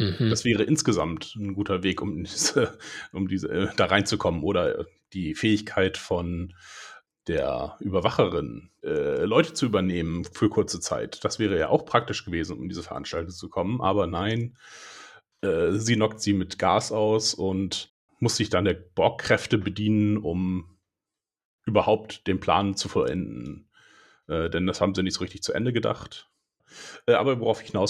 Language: German